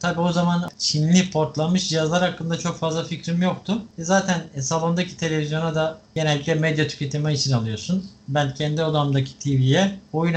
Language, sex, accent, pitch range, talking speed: Turkish, male, native, 140-175 Hz, 150 wpm